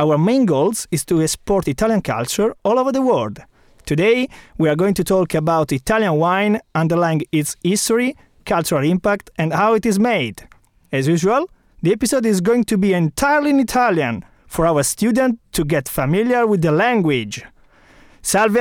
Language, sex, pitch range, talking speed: English, male, 160-220 Hz, 170 wpm